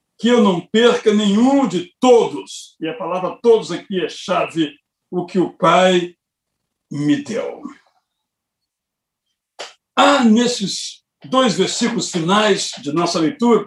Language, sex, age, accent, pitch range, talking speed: Portuguese, male, 60-79, Brazilian, 175-230 Hz, 125 wpm